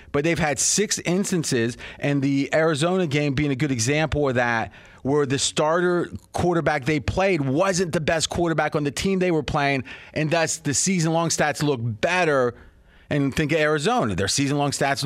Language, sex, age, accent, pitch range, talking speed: English, male, 30-49, American, 140-185 Hz, 180 wpm